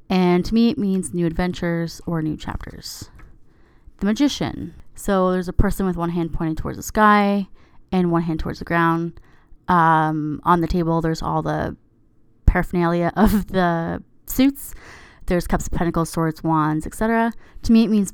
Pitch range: 165-195 Hz